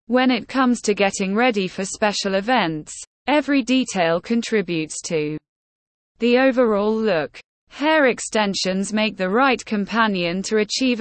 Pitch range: 180-255 Hz